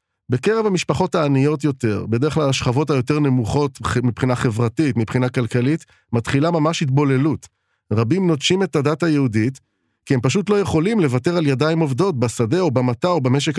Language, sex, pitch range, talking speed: Hebrew, male, 120-155 Hz, 155 wpm